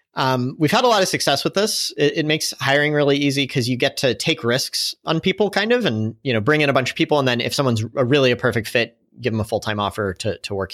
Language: English